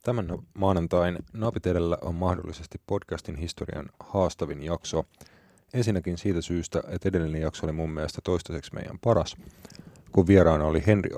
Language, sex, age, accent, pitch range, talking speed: Finnish, male, 30-49, native, 85-100 Hz, 135 wpm